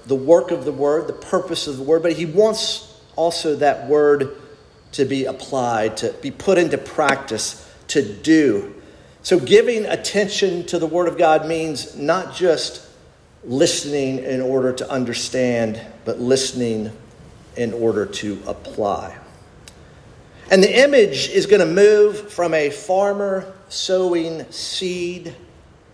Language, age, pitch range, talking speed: English, 50-69, 130-180 Hz, 140 wpm